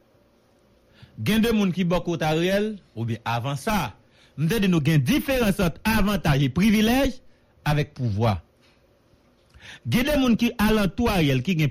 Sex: male